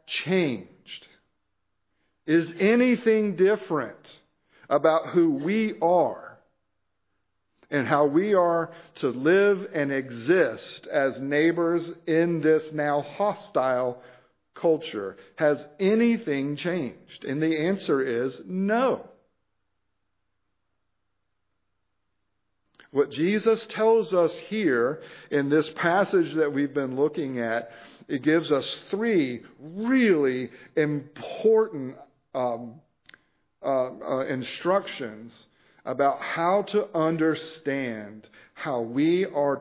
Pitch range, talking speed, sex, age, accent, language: 115-170 Hz, 90 wpm, male, 50-69, American, English